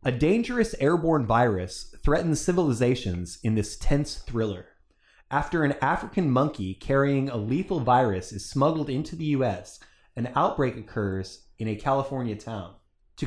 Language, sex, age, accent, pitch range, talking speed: English, male, 20-39, American, 105-150 Hz, 140 wpm